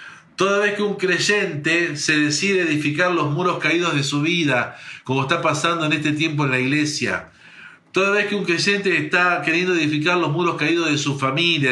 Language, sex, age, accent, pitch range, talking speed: Spanish, male, 50-69, Argentinian, 135-170 Hz, 190 wpm